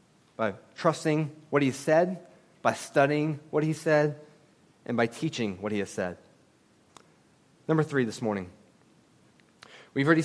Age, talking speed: 30-49, 140 wpm